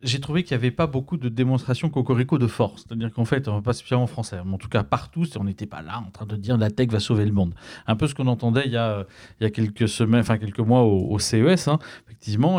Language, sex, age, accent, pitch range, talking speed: French, male, 40-59, French, 110-140 Hz, 280 wpm